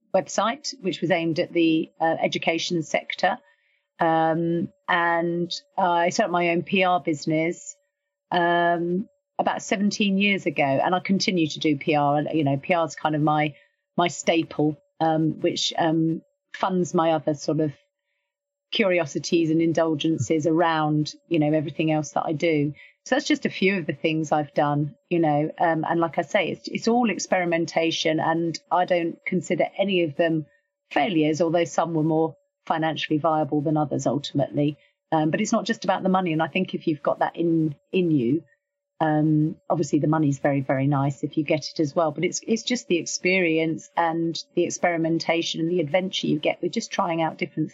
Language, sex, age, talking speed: English, female, 40-59, 185 wpm